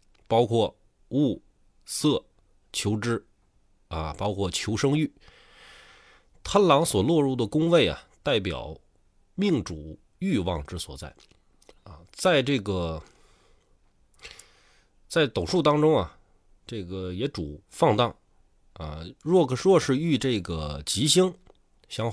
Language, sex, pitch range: Chinese, male, 85-130 Hz